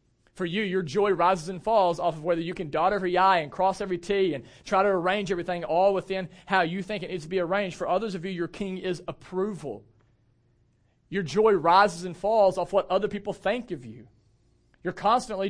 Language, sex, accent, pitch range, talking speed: English, male, American, 115-185 Hz, 215 wpm